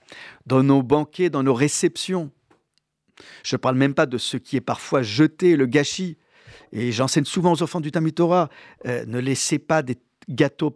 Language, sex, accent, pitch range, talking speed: French, male, French, 125-170 Hz, 180 wpm